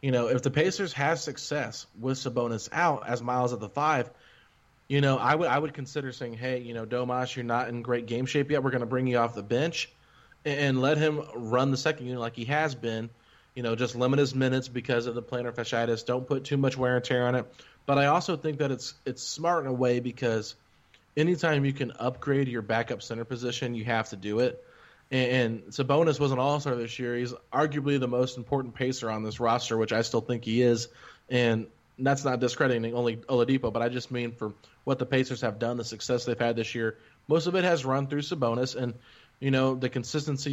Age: 30-49